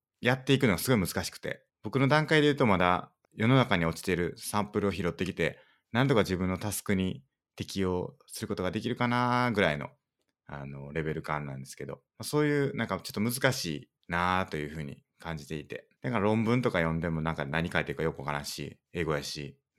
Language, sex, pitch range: Japanese, male, 75-110 Hz